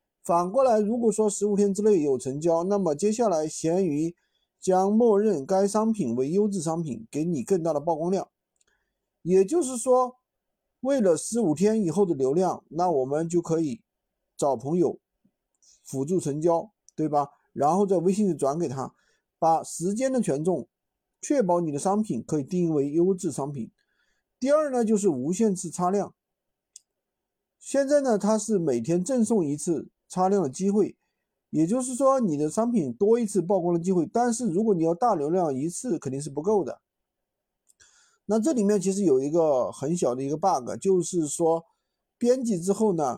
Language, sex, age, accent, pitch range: Chinese, male, 50-69, native, 165-215 Hz